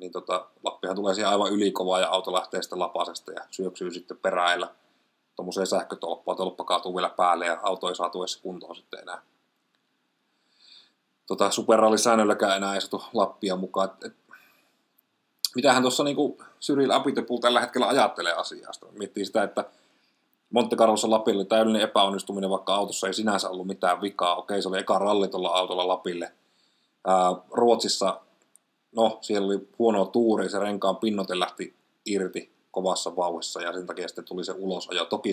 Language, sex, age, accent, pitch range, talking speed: Finnish, male, 30-49, native, 95-110 Hz, 155 wpm